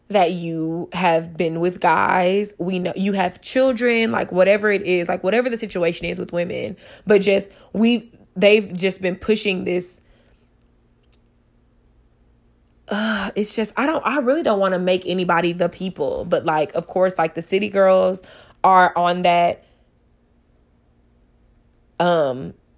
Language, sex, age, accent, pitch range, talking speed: English, female, 20-39, American, 170-195 Hz, 150 wpm